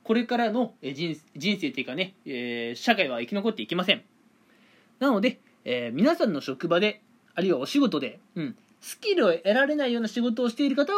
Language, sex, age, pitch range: Japanese, male, 20-39, 185-260 Hz